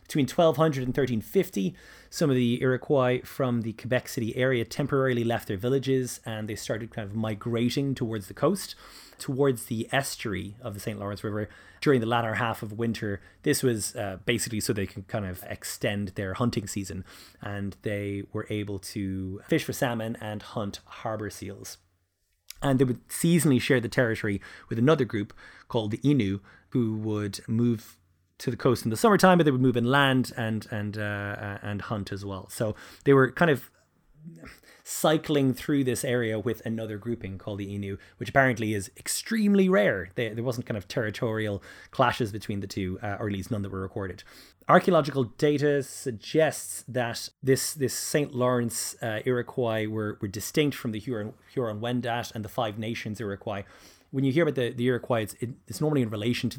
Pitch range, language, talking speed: 105-130 Hz, English, 185 wpm